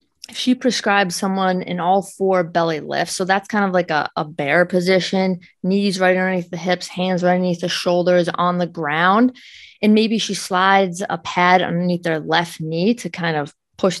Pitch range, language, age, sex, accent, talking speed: 180-215 Hz, English, 20-39, female, American, 190 wpm